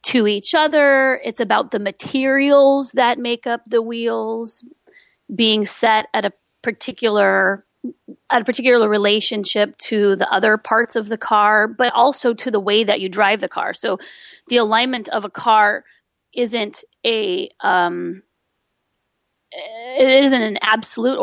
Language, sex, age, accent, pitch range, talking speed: English, female, 30-49, American, 200-245 Hz, 150 wpm